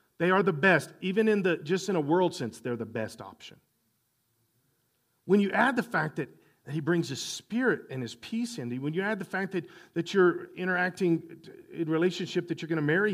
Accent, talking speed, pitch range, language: American, 215 wpm, 155-230 Hz, English